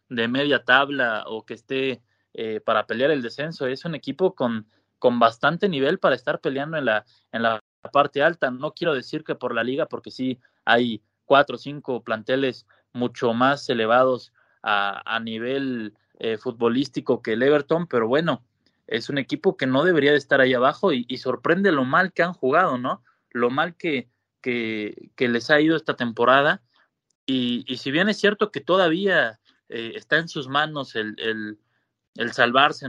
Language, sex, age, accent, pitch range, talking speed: Spanish, male, 20-39, Mexican, 120-145 Hz, 180 wpm